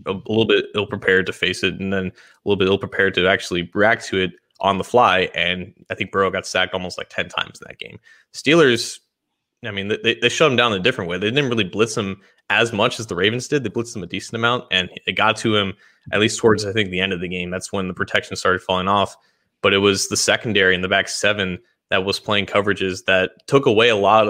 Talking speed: 255 wpm